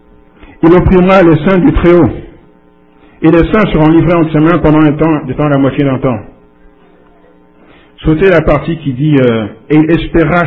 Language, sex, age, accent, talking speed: French, male, 50-69, French, 170 wpm